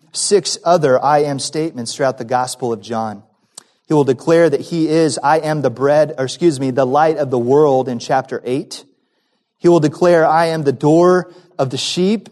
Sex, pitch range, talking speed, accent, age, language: male, 155-225 Hz, 200 wpm, American, 30-49, English